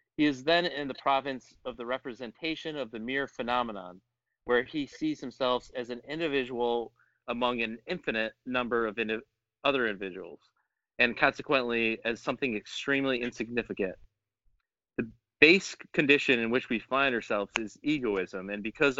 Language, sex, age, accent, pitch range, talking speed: English, male, 30-49, American, 115-140 Hz, 140 wpm